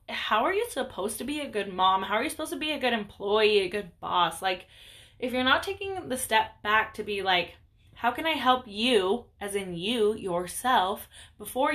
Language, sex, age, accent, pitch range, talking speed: English, female, 10-29, American, 185-260 Hz, 215 wpm